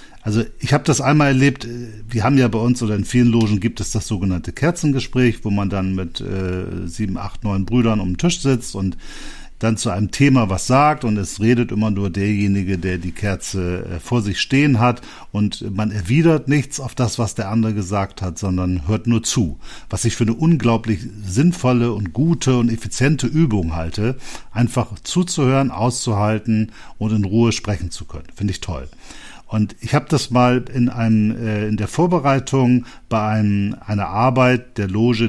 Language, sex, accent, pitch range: German, male, German, 100-130 Hz